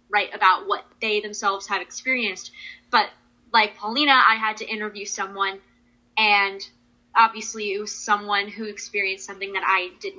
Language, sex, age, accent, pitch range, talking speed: English, female, 10-29, American, 205-235 Hz, 155 wpm